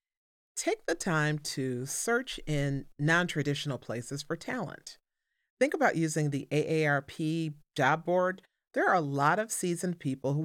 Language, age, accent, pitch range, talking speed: English, 40-59, American, 135-180 Hz, 145 wpm